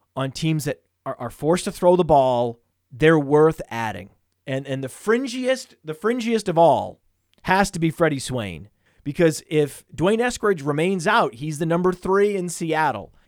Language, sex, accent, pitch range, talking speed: English, male, American, 135-180 Hz, 165 wpm